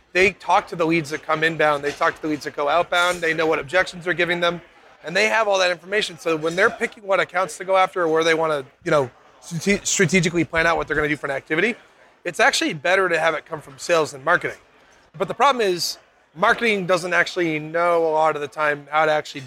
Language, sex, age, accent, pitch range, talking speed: English, male, 30-49, American, 155-185 Hz, 260 wpm